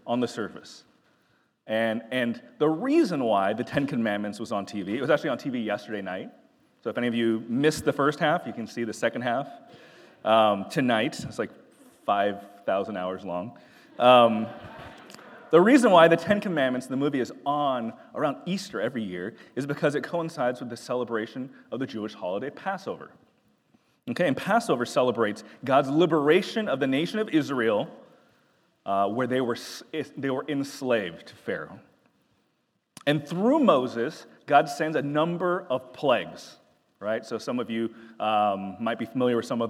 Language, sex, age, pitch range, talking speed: English, male, 30-49, 110-150 Hz, 170 wpm